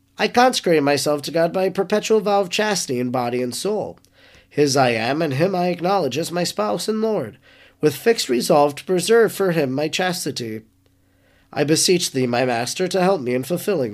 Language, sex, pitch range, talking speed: English, male, 135-195 Hz, 200 wpm